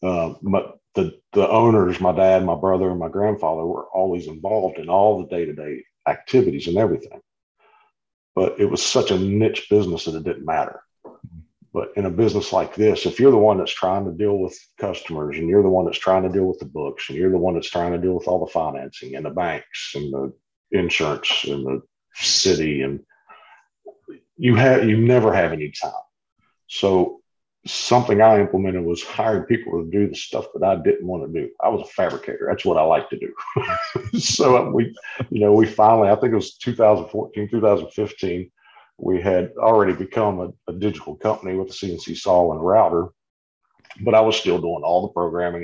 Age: 50-69